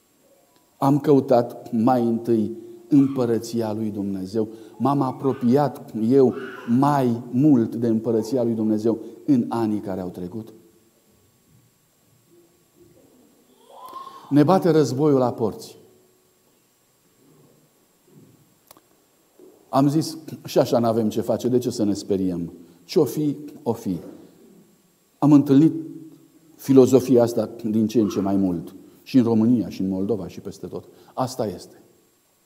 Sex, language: male, Romanian